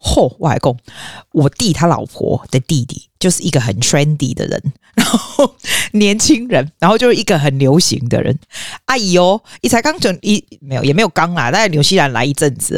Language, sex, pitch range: Chinese, female, 140-195 Hz